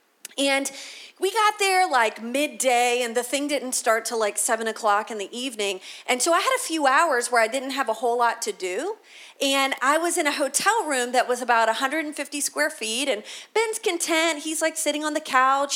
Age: 30-49